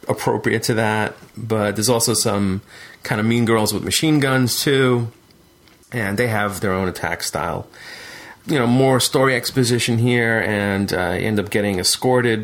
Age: 30-49